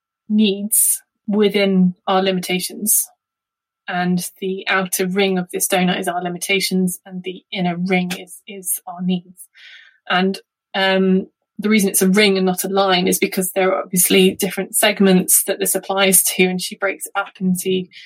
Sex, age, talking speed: female, 20-39, 165 wpm